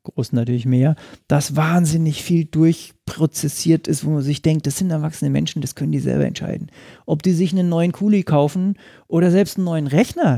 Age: 40-59